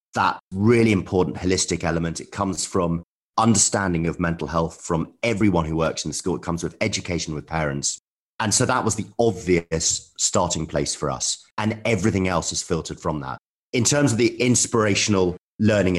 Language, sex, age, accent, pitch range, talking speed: English, male, 30-49, British, 85-105 Hz, 180 wpm